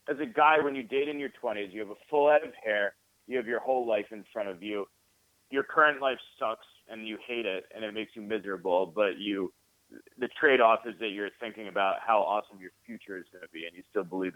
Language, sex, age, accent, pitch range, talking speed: English, male, 30-49, American, 95-125 Hz, 245 wpm